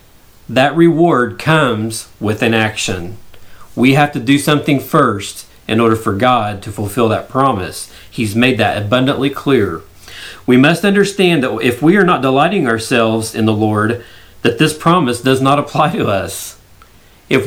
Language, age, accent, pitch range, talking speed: English, 40-59, American, 110-135 Hz, 160 wpm